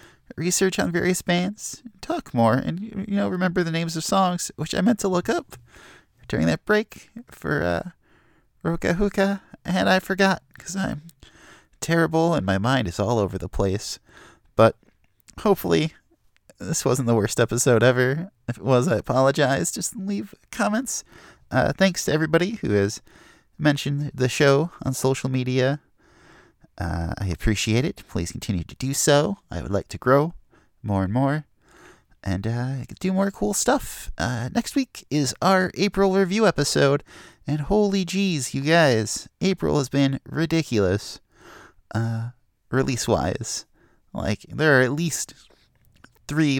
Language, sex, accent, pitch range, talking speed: English, male, American, 115-180 Hz, 150 wpm